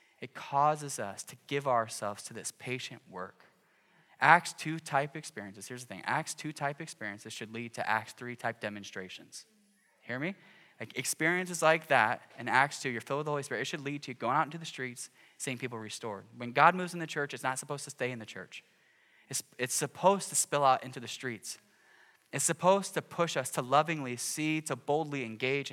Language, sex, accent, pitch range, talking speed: English, male, American, 115-150 Hz, 210 wpm